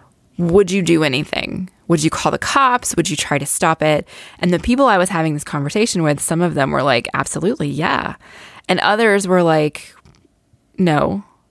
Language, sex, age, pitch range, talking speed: English, female, 20-39, 155-195 Hz, 190 wpm